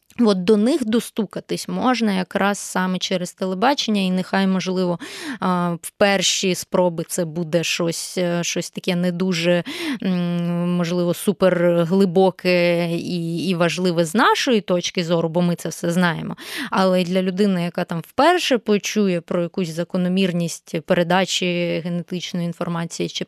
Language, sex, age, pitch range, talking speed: Ukrainian, female, 20-39, 175-200 Hz, 130 wpm